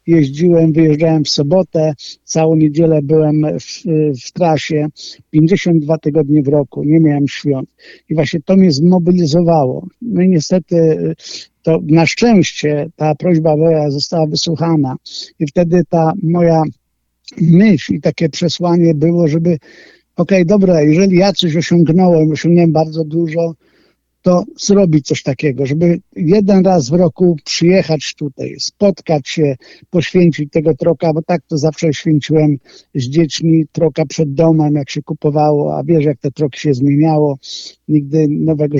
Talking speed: 140 wpm